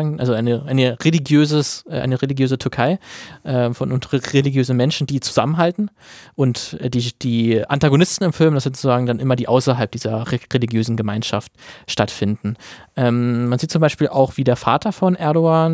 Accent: German